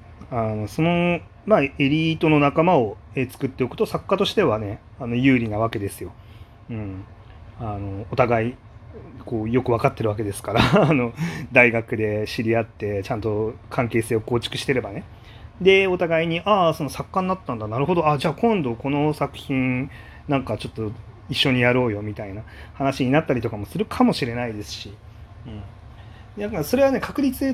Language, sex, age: Japanese, male, 30-49